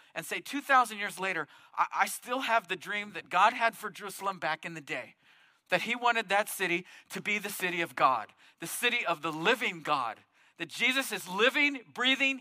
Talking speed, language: 200 wpm, English